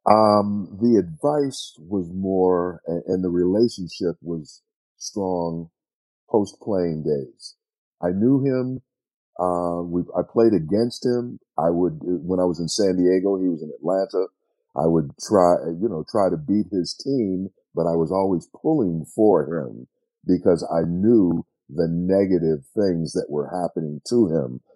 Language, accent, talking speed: English, American, 150 wpm